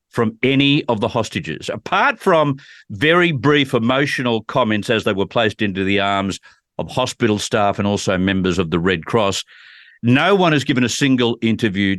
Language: English